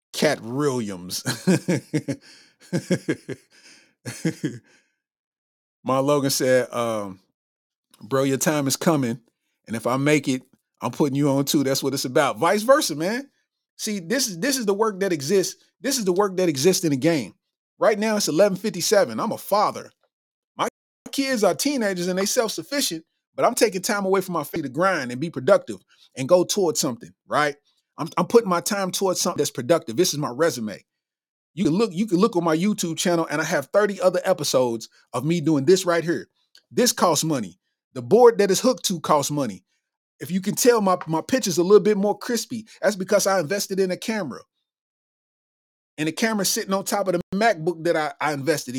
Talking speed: 195 wpm